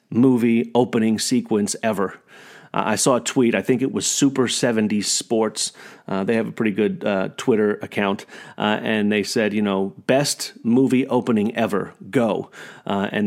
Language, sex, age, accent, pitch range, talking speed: English, male, 40-59, American, 110-130 Hz, 170 wpm